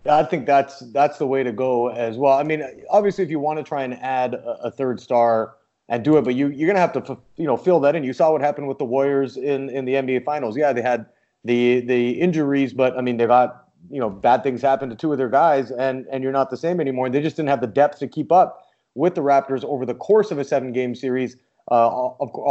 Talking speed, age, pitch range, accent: 265 wpm, 30-49, 130-155 Hz, American